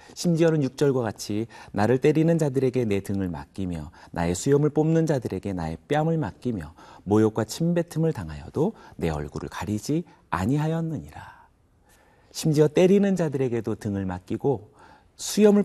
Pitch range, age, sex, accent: 90-145 Hz, 40-59, male, native